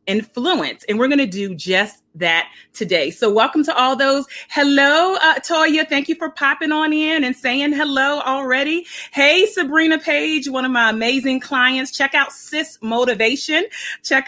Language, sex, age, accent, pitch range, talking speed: English, female, 30-49, American, 215-285 Hz, 170 wpm